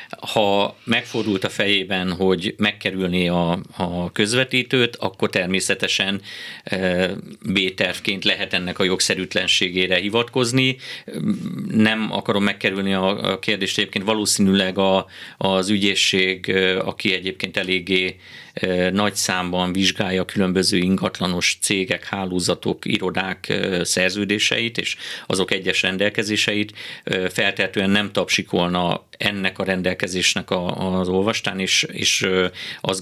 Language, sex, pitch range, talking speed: Hungarian, male, 95-105 Hz, 100 wpm